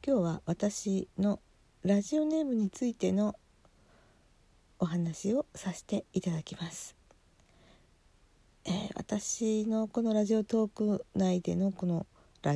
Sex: female